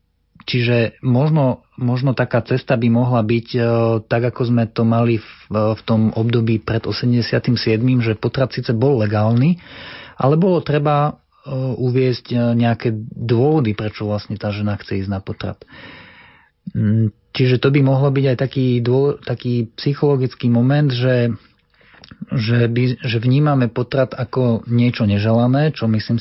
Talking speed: 135 wpm